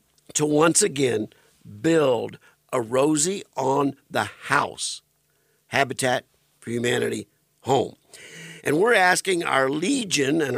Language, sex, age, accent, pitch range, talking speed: English, male, 50-69, American, 130-160 Hz, 90 wpm